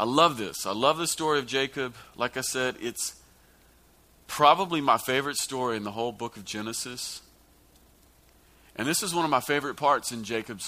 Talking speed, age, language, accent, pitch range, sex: 185 wpm, 40-59, English, American, 100-140 Hz, male